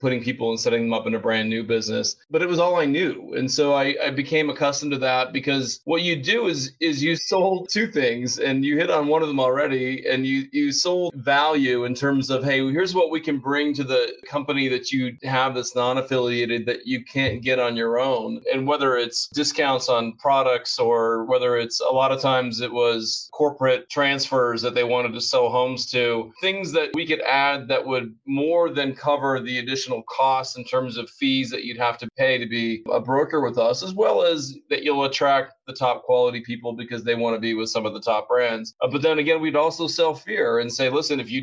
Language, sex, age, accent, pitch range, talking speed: English, male, 30-49, American, 125-150 Hz, 225 wpm